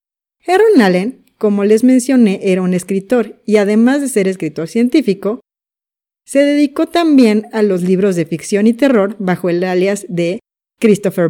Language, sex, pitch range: Spanish, female, 185-245 Hz